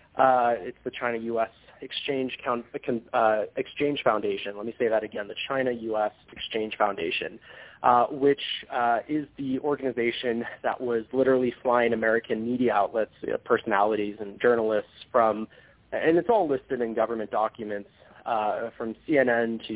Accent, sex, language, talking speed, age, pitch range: American, male, English, 135 wpm, 20-39, 110-135 Hz